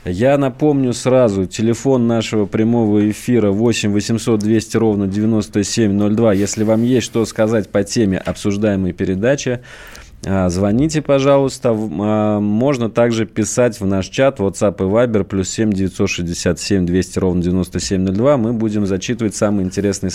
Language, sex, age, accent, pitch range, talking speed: Russian, male, 20-39, native, 95-120 Hz, 130 wpm